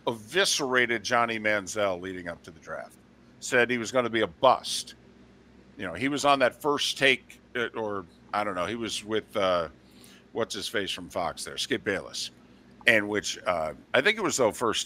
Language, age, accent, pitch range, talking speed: English, 50-69, American, 100-140 Hz, 200 wpm